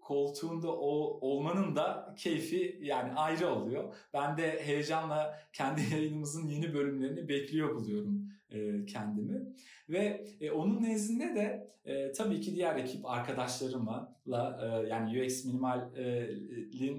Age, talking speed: 40-59, 120 wpm